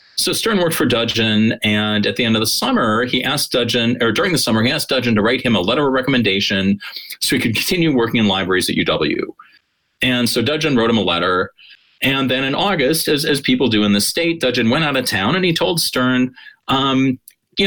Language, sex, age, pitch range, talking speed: English, male, 40-59, 110-145 Hz, 230 wpm